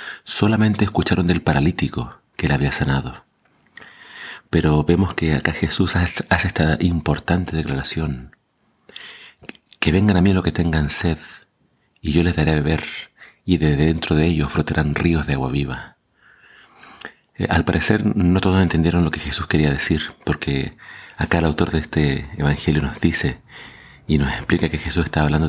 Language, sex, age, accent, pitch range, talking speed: Spanish, male, 30-49, Argentinian, 75-90 Hz, 160 wpm